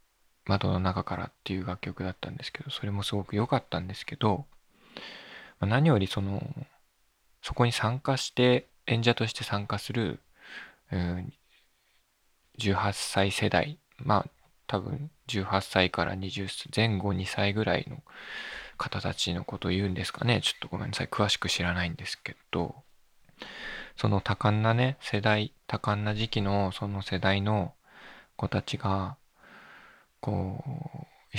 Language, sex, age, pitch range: Japanese, male, 20-39, 95-125 Hz